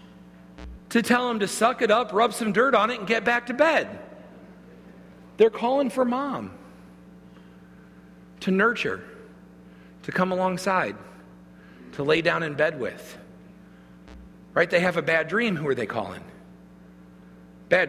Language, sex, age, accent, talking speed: English, male, 40-59, American, 145 wpm